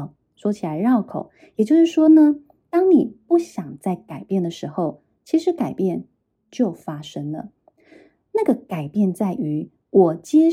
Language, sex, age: Chinese, female, 20-39